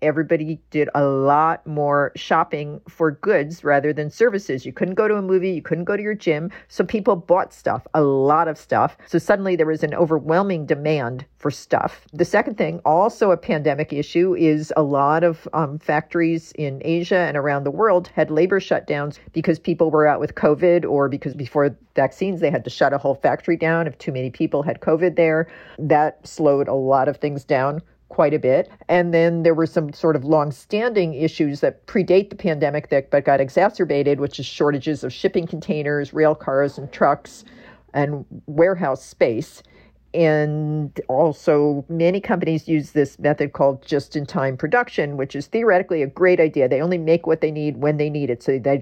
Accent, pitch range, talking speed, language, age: American, 145-170 Hz, 195 wpm, English, 50-69